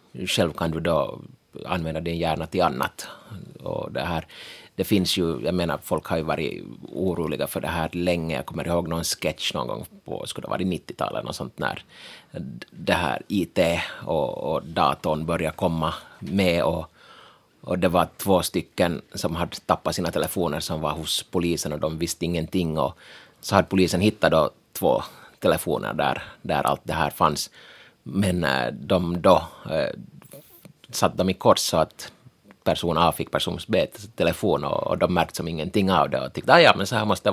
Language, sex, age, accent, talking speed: Finnish, male, 30-49, native, 180 wpm